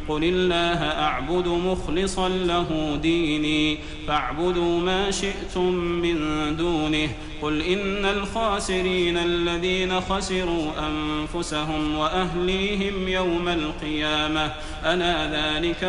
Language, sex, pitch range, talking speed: Arabic, male, 155-185 Hz, 85 wpm